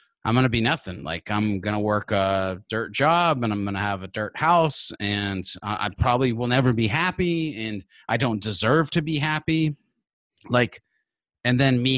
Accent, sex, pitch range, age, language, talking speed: American, male, 100-125 Hz, 30-49, English, 195 wpm